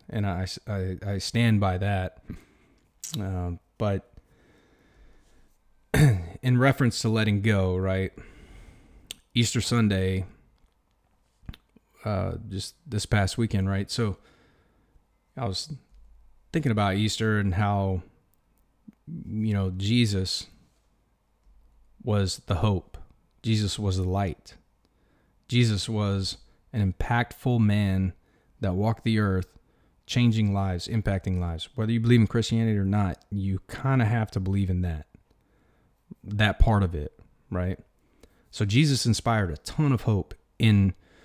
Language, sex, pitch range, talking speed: English, male, 95-115 Hz, 120 wpm